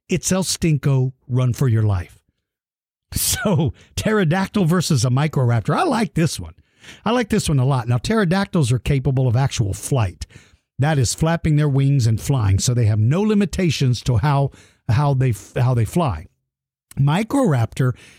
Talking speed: 160 wpm